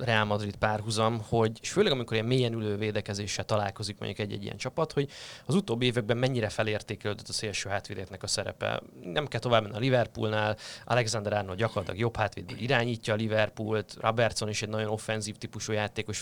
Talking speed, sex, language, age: 180 wpm, male, Hungarian, 20-39